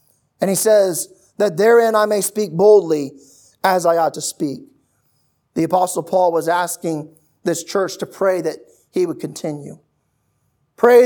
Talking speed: 150 wpm